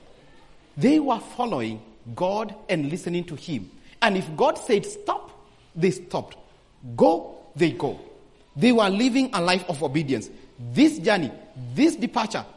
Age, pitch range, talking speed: 40-59, 185-265 Hz, 140 wpm